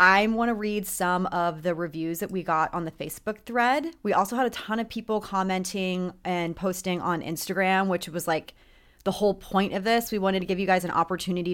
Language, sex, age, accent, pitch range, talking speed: English, female, 30-49, American, 175-210 Hz, 225 wpm